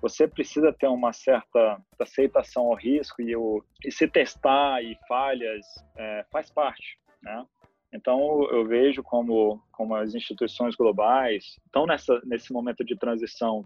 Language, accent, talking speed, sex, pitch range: Portuguese, Brazilian, 145 wpm, male, 110-140 Hz